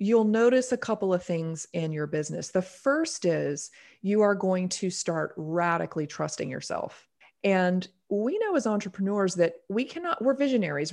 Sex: female